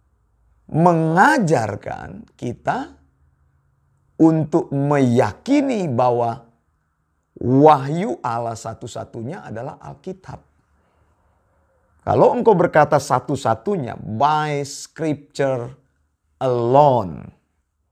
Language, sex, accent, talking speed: Indonesian, male, native, 55 wpm